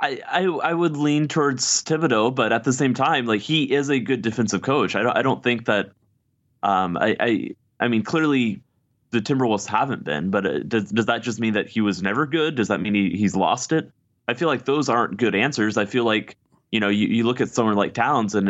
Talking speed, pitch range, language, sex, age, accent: 235 wpm, 95-120 Hz, English, male, 20-39, American